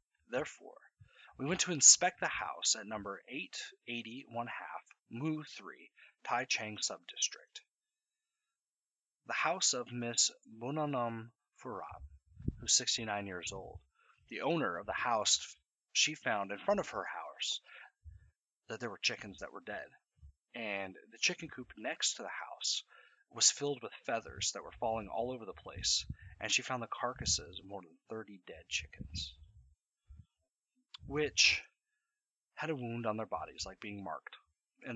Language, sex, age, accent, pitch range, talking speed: English, male, 30-49, American, 90-125 Hz, 150 wpm